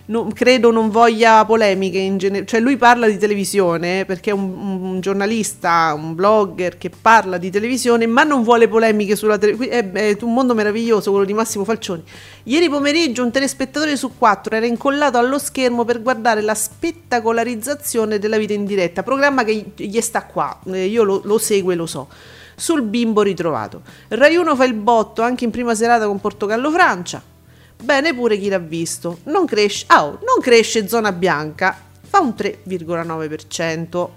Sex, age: female, 40-59